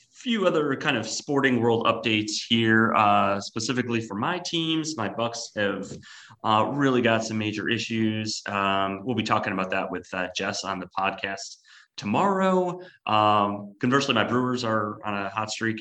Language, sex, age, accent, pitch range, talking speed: English, male, 30-49, American, 100-120 Hz, 165 wpm